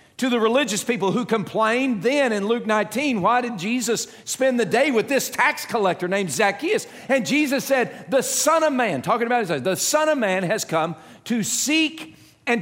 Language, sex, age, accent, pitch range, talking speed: English, male, 50-69, American, 155-240 Hz, 195 wpm